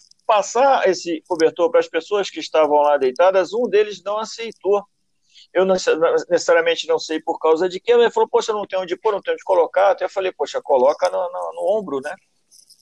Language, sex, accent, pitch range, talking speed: Portuguese, male, Brazilian, 190-275 Hz, 210 wpm